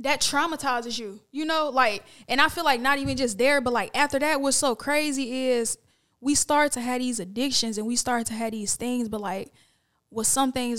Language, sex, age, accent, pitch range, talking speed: English, female, 10-29, American, 230-270 Hz, 225 wpm